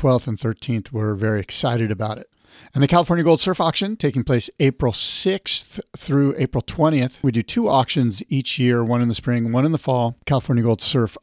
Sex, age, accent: male, 40-59, American